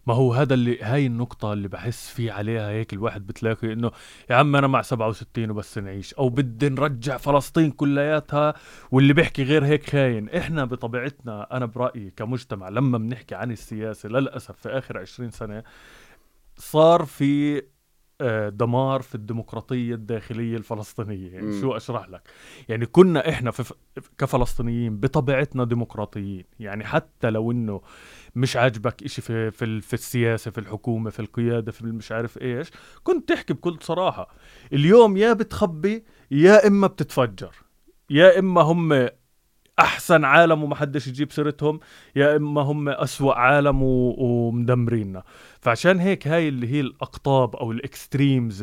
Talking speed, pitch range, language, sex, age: 140 wpm, 115-145 Hz, English, male, 20-39